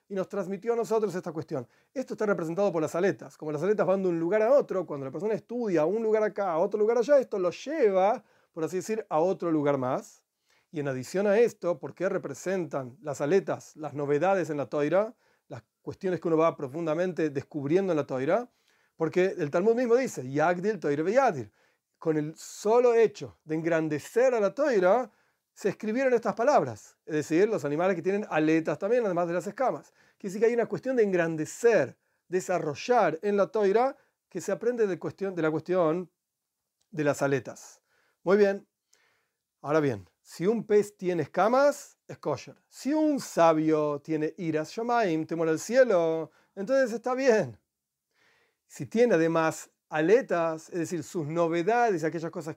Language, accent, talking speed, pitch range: Spanish, Argentinian, 180 wpm, 155-215 Hz